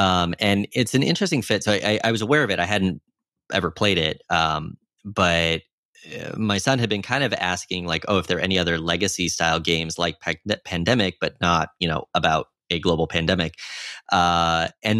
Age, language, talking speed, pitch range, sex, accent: 30-49, English, 195 wpm, 85-110 Hz, male, American